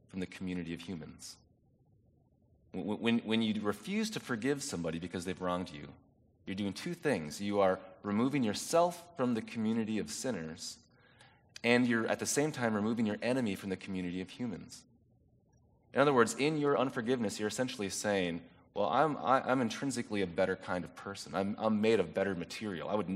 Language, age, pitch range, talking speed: English, 30-49, 90-120 Hz, 180 wpm